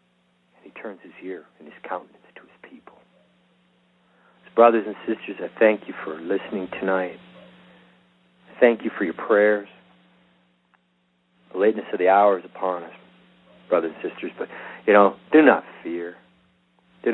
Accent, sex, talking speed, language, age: American, male, 150 wpm, English, 50-69